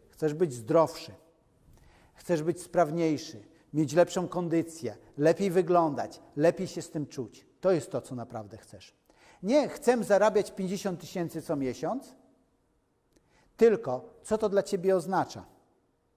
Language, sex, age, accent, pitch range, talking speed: Polish, male, 50-69, native, 150-210 Hz, 130 wpm